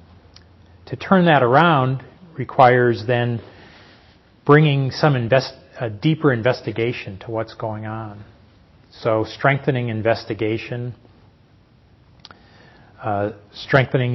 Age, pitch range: 40-59, 105-130 Hz